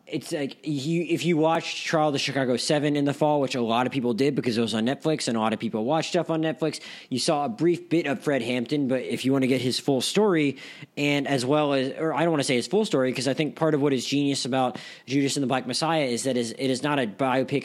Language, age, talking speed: English, 20-39, 295 wpm